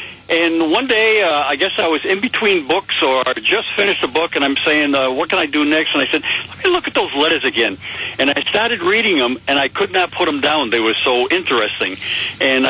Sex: male